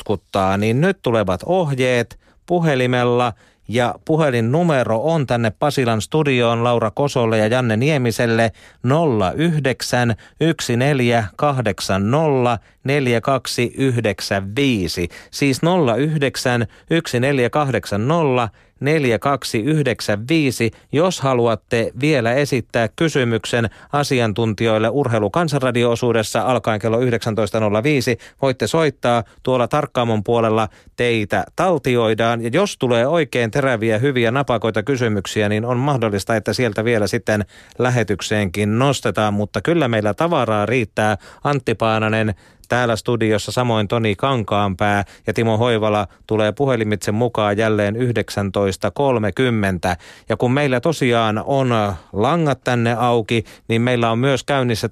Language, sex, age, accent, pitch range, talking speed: Finnish, male, 40-59, native, 110-135 Hz, 95 wpm